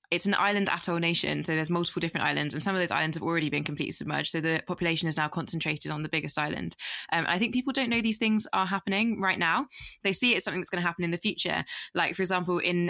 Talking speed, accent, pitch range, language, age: 275 wpm, British, 165-190 Hz, English, 20-39